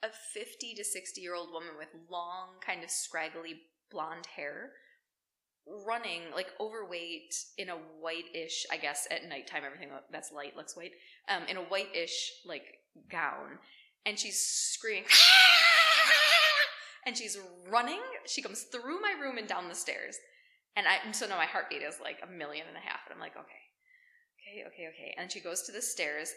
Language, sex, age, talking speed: English, female, 20-39, 180 wpm